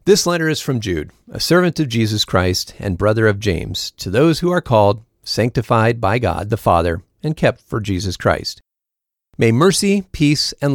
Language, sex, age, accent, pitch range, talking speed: English, male, 40-59, American, 100-145 Hz, 185 wpm